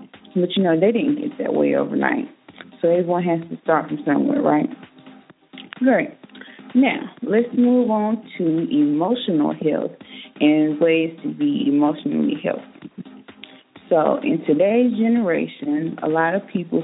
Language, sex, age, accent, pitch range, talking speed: English, female, 30-49, American, 160-260 Hz, 140 wpm